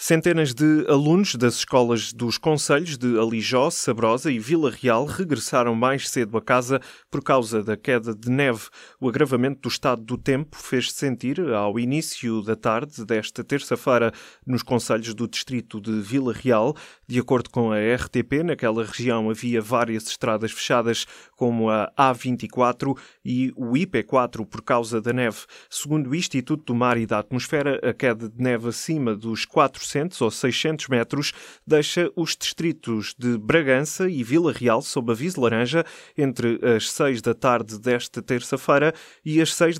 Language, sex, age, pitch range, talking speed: Portuguese, male, 20-39, 115-140 Hz, 160 wpm